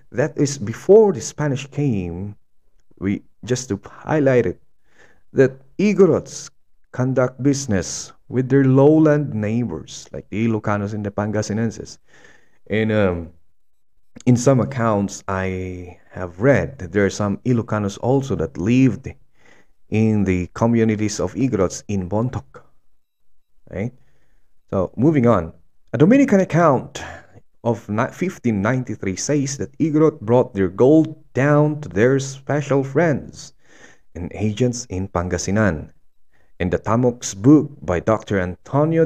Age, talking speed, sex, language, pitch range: 30-49, 120 wpm, male, English, 95-135 Hz